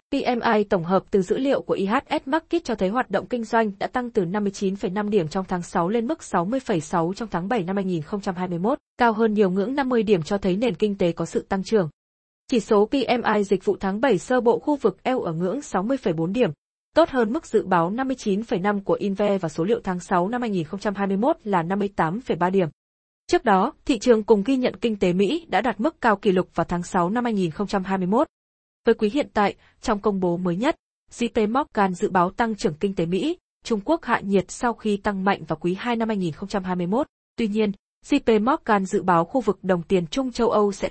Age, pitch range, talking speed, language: 20-39, 190-240 Hz, 215 wpm, Vietnamese